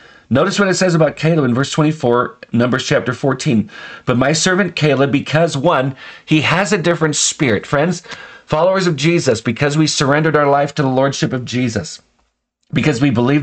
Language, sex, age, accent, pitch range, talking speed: English, male, 40-59, American, 135-170 Hz, 180 wpm